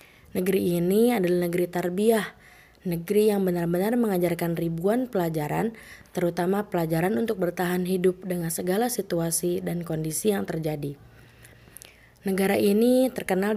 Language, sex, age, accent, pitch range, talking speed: English, female, 20-39, Indonesian, 165-205 Hz, 115 wpm